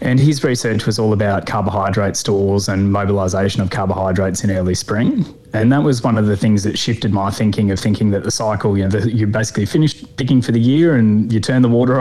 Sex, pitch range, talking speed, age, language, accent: male, 100-115 Hz, 230 wpm, 20-39, English, Australian